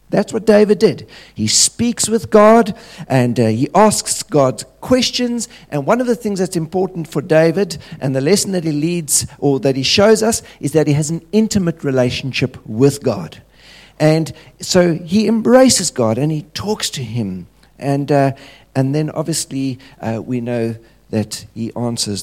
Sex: male